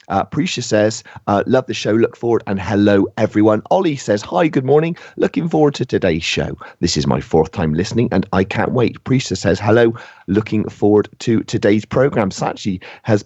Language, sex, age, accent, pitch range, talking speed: English, male, 40-59, British, 90-115 Hz, 190 wpm